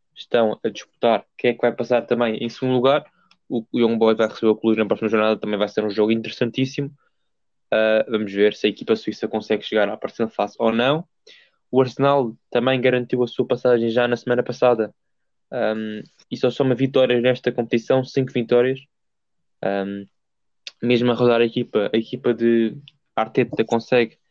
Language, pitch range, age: Portuguese, 115-130 Hz, 10-29